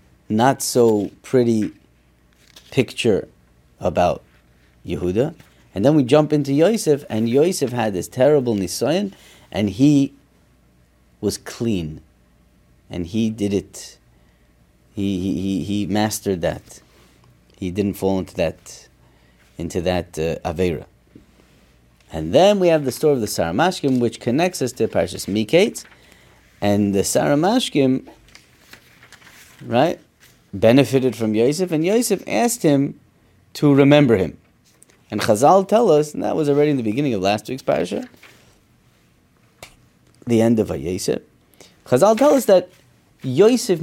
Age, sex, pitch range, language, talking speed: 30-49, male, 90-140 Hz, English, 130 wpm